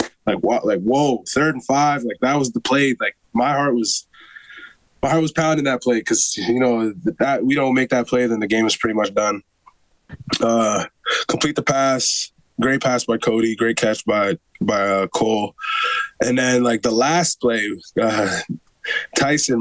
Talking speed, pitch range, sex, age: 185 wpm, 115-135 Hz, male, 20-39